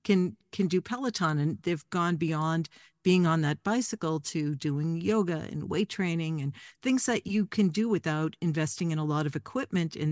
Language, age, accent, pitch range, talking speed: English, 50-69, American, 155-195 Hz, 190 wpm